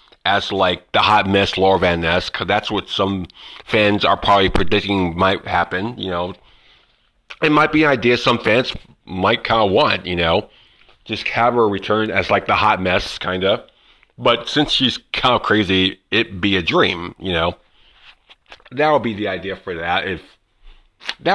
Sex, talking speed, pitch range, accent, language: male, 185 wpm, 95-125 Hz, American, English